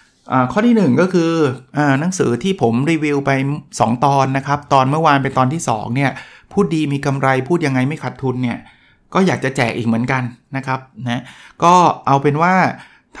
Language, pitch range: Thai, 125-150 Hz